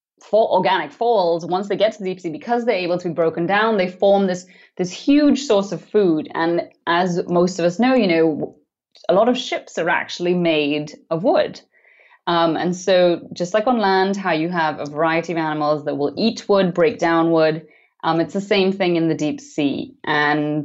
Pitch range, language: 160-205 Hz, English